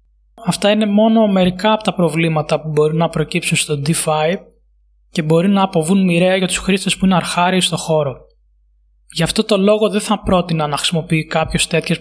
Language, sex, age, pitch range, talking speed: Greek, male, 20-39, 160-195 Hz, 185 wpm